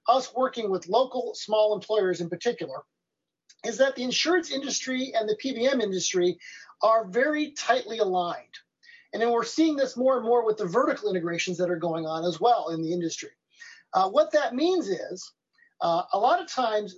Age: 40-59